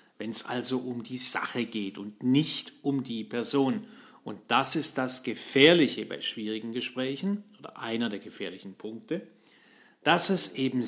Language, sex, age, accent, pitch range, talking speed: German, male, 40-59, German, 125-195 Hz, 155 wpm